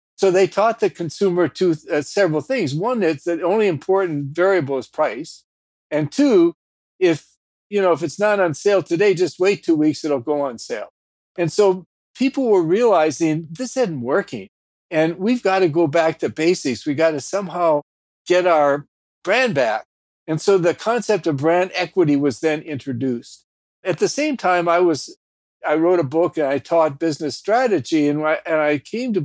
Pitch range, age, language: 145-185 Hz, 60-79, English